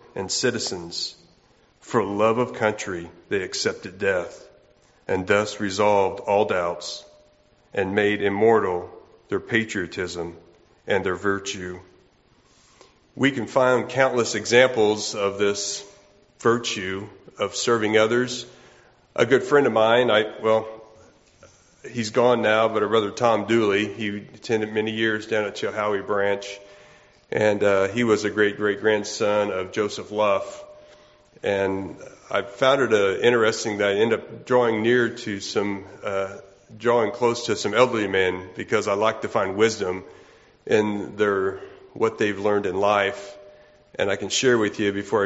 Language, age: English, 40-59